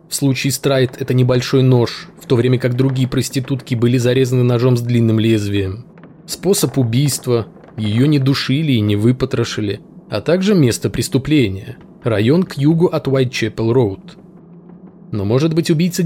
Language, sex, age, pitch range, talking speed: Russian, male, 20-39, 120-165 Hz, 155 wpm